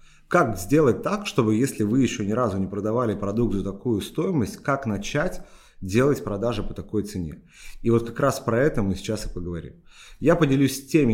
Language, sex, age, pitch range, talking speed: Russian, male, 30-49, 100-125 Hz, 190 wpm